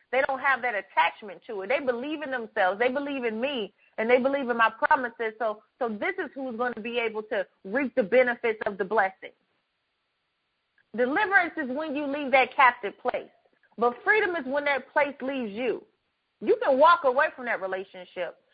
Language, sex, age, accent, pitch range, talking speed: English, female, 30-49, American, 250-335 Hz, 195 wpm